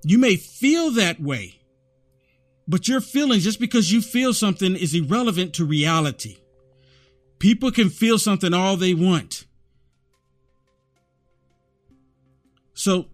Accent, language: American, English